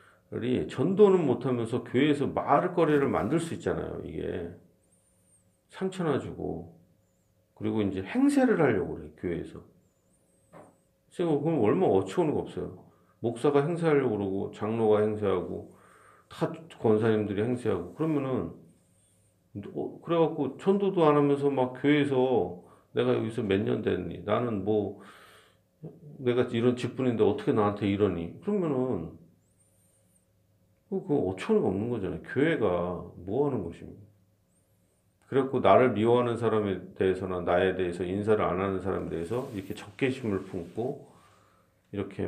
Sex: male